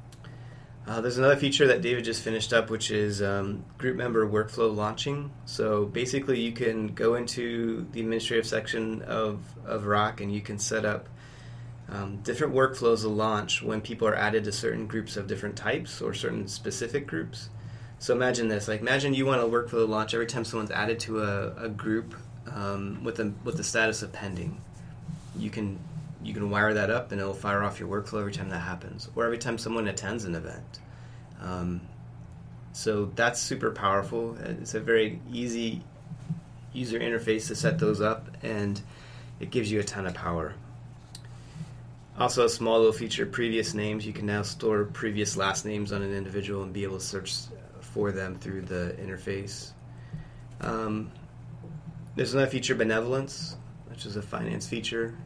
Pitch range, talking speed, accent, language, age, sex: 105-120 Hz, 180 wpm, American, English, 20-39, male